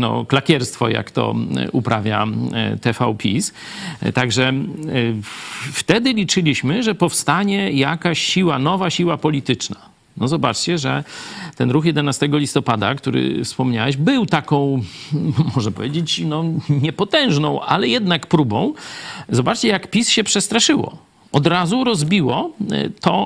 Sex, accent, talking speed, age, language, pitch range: male, native, 115 wpm, 40-59, Polish, 130-175 Hz